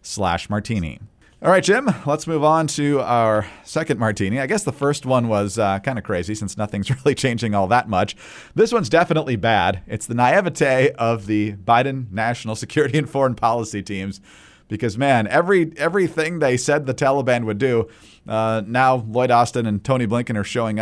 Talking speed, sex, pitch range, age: 185 wpm, male, 105-140 Hz, 40-59